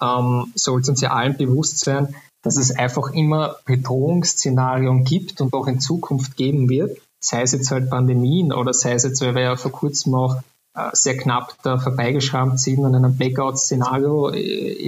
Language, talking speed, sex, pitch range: German, 180 wpm, male, 130-145 Hz